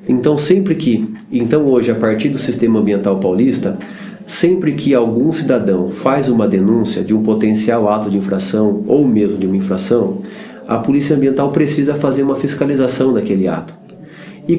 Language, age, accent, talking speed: Portuguese, 30-49, Brazilian, 160 wpm